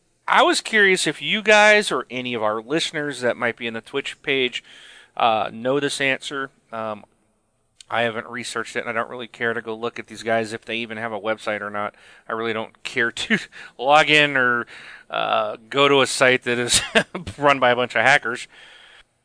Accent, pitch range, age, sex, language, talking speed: American, 120-160 Hz, 30-49, male, English, 210 wpm